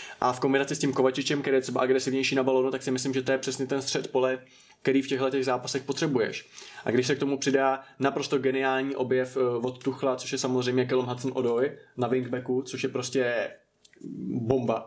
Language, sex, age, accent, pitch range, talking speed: Czech, male, 20-39, native, 125-135 Hz, 200 wpm